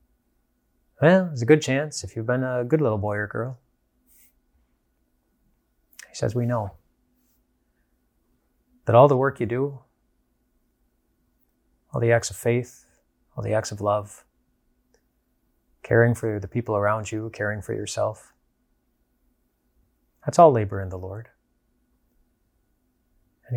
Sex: male